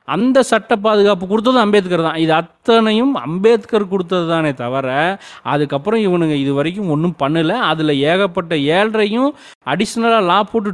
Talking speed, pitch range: 130 wpm, 160-225 Hz